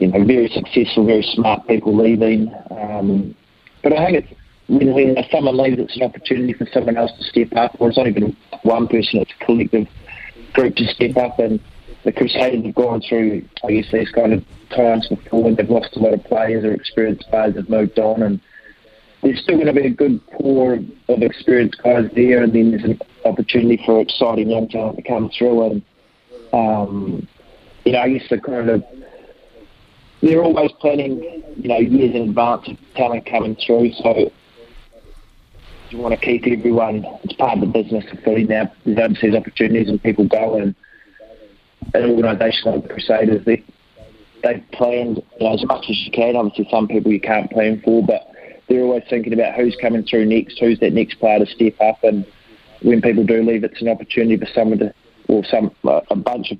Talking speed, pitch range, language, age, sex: 195 wpm, 110-120 Hz, English, 30-49, male